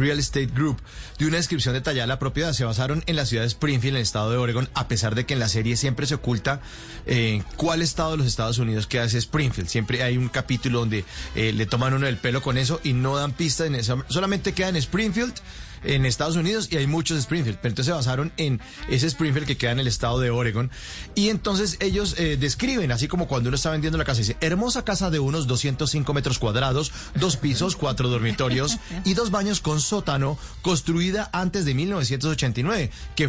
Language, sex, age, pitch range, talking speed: Spanish, male, 30-49, 120-160 Hz, 220 wpm